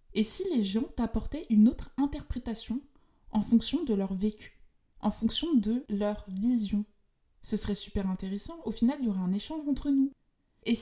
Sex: female